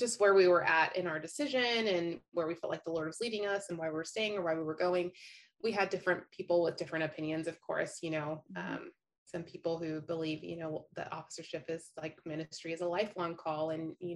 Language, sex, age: English, female, 20-39